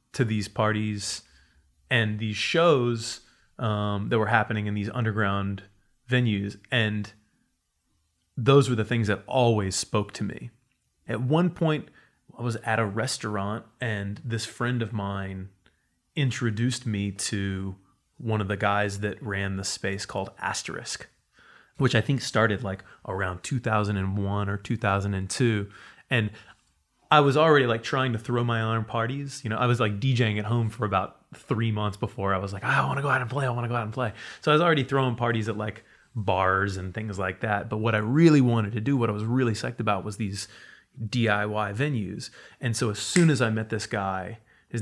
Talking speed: 190 wpm